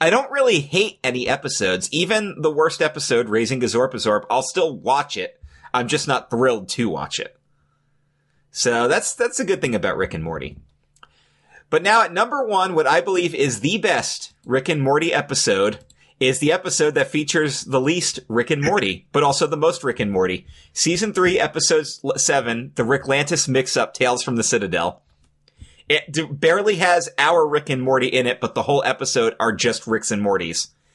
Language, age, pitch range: English, 30-49, 120-150 Hz